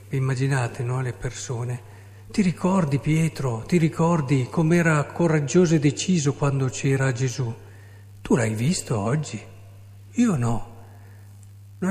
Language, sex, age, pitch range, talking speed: Italian, male, 50-69, 100-150 Hz, 115 wpm